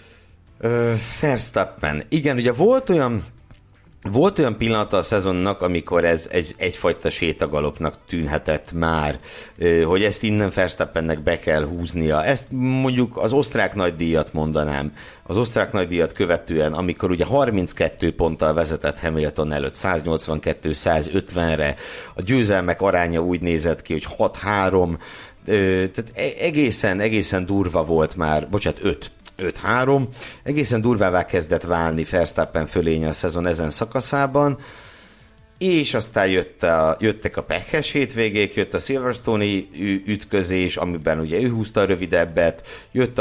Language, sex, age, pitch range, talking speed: Hungarian, male, 60-79, 85-115 Hz, 120 wpm